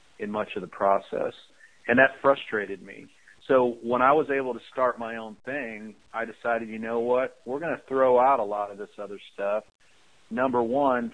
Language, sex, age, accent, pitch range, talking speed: English, male, 40-59, American, 110-120 Hz, 200 wpm